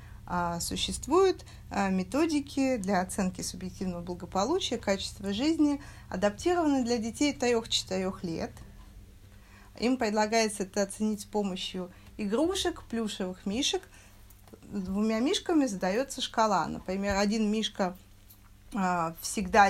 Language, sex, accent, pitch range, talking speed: Russian, female, native, 185-245 Hz, 90 wpm